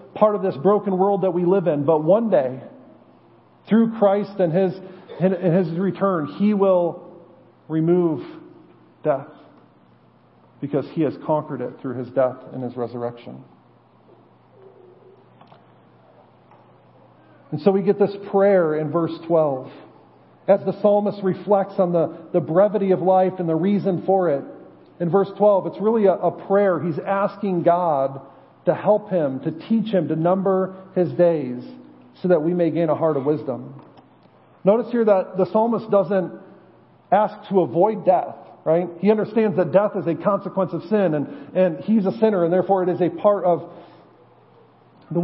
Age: 40-59